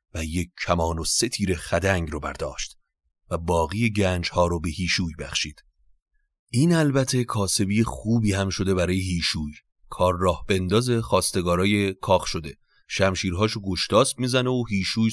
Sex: male